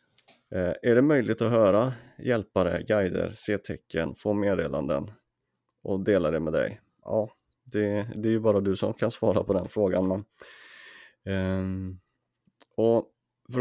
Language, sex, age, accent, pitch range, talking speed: Swedish, male, 30-49, native, 95-115 Hz, 150 wpm